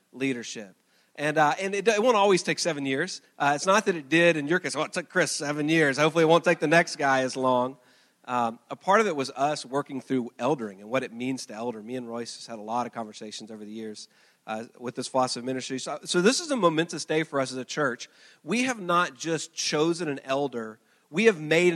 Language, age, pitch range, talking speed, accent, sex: English, 40-59, 130-170 Hz, 250 wpm, American, male